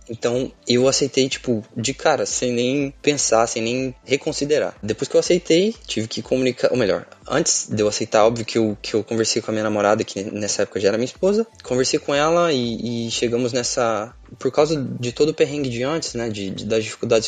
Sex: male